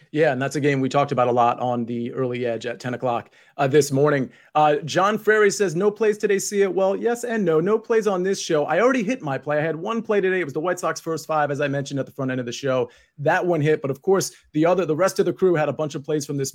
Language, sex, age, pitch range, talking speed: English, male, 30-49, 140-175 Hz, 310 wpm